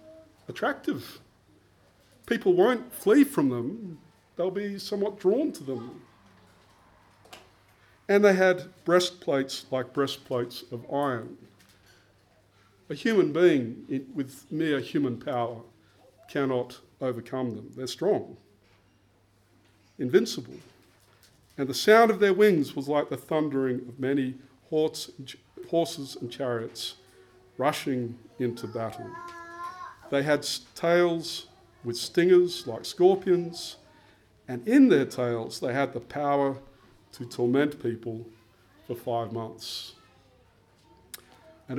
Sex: male